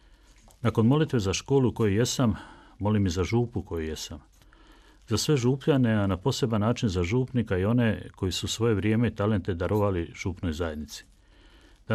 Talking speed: 165 wpm